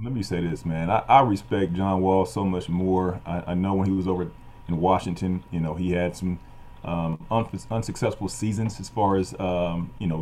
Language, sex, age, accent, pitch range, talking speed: English, male, 30-49, American, 90-110 Hz, 210 wpm